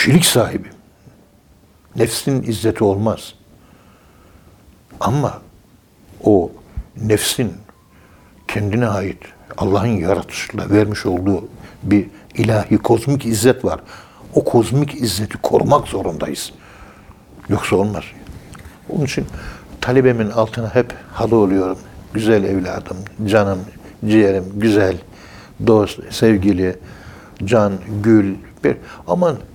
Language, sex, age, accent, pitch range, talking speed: Turkish, male, 60-79, native, 100-120 Hz, 90 wpm